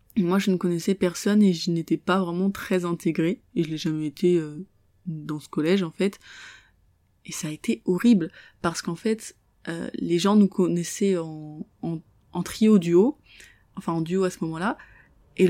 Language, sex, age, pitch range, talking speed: French, female, 20-39, 175-205 Hz, 180 wpm